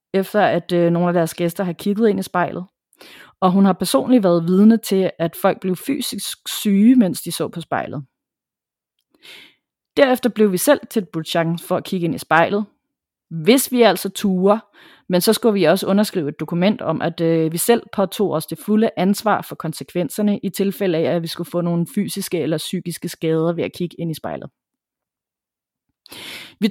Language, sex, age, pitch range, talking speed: Danish, female, 30-49, 170-220 Hz, 185 wpm